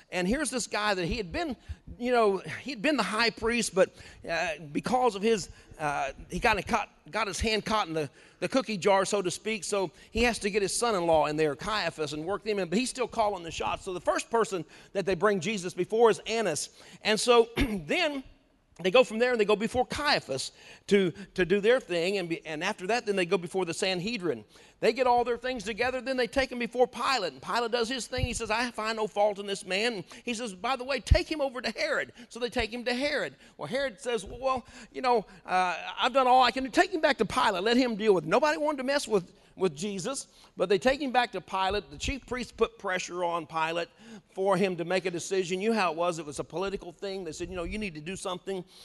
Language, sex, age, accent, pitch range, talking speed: English, male, 40-59, American, 185-245 Hz, 255 wpm